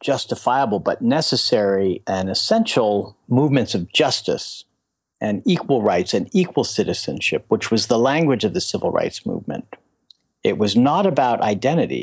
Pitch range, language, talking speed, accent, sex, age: 105-145 Hz, English, 140 wpm, American, male, 50-69